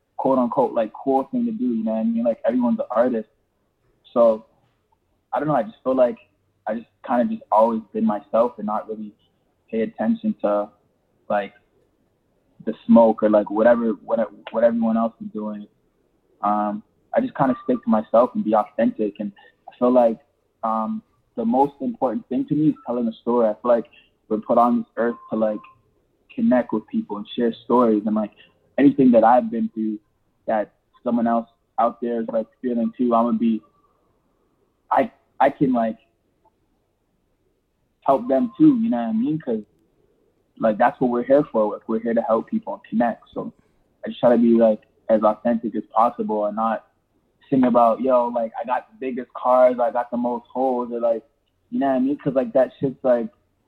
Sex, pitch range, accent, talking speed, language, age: male, 110-145 Hz, American, 195 wpm, English, 20-39